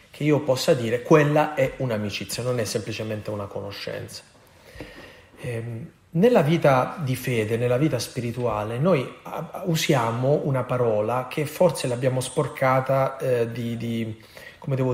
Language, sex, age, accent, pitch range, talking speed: Italian, male, 30-49, native, 110-135 Hz, 115 wpm